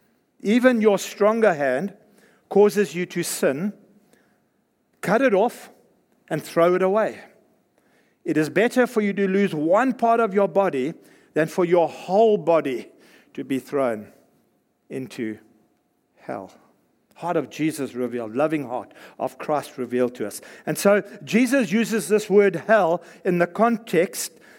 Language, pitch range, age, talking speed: English, 170-215 Hz, 60-79, 140 wpm